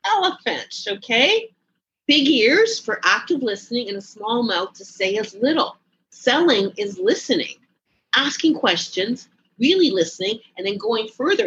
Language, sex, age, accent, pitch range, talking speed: English, female, 40-59, American, 195-285 Hz, 135 wpm